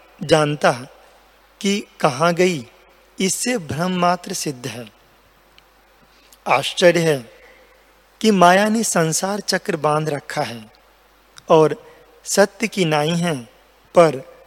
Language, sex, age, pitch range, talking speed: Hindi, male, 40-59, 155-190 Hz, 105 wpm